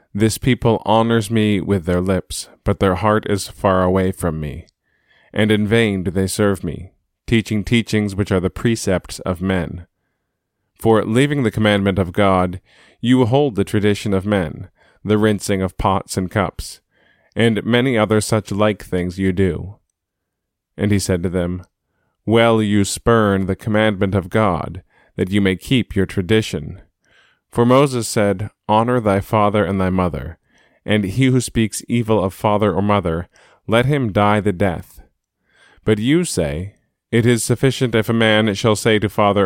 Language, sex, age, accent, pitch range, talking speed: English, male, 20-39, American, 95-110 Hz, 165 wpm